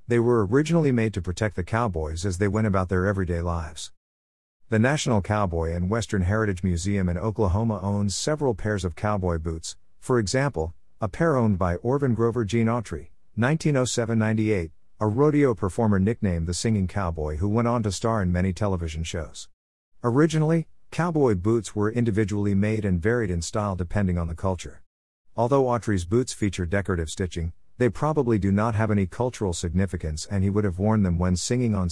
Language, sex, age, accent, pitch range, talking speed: English, male, 50-69, American, 90-120 Hz, 175 wpm